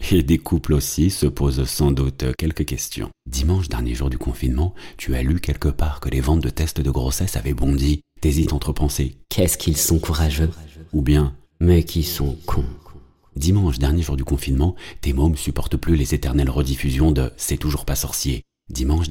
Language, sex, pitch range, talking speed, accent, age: French, male, 70-80 Hz, 190 wpm, French, 40-59